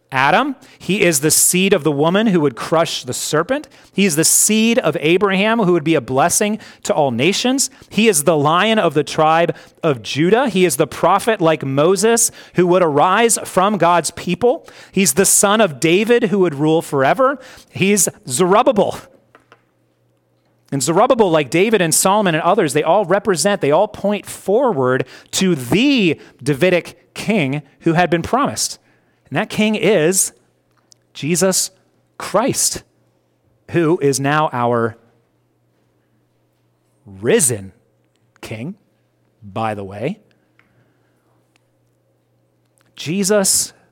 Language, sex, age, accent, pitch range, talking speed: English, male, 30-49, American, 125-190 Hz, 135 wpm